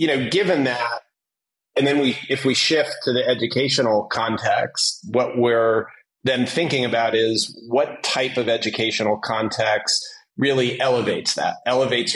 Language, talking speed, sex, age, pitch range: English, 145 wpm, male, 30-49, 110-130 Hz